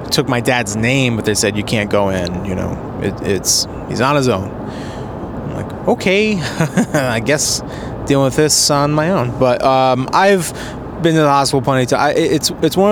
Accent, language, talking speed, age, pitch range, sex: American, English, 205 wpm, 20-39, 110-140 Hz, male